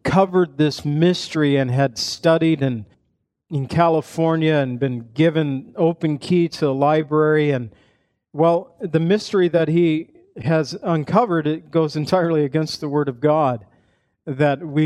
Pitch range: 145-170 Hz